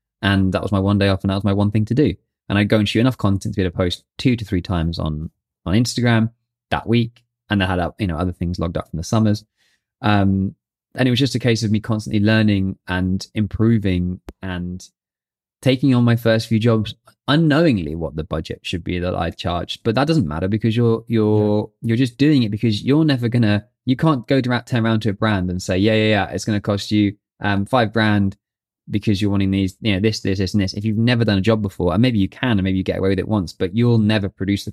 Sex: male